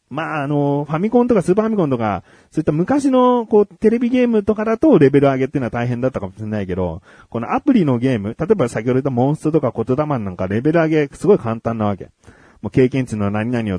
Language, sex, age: Japanese, male, 40-59